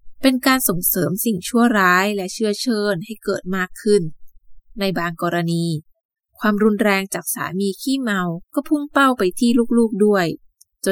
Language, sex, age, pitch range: Thai, female, 20-39, 165-225 Hz